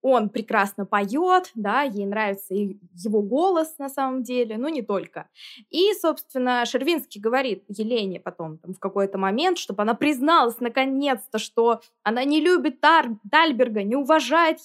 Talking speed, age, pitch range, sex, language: 150 wpm, 20-39, 220-280 Hz, female, Russian